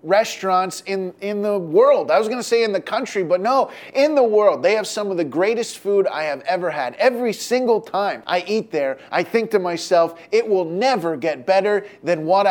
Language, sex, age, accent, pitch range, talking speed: English, male, 20-39, American, 175-245 Hz, 215 wpm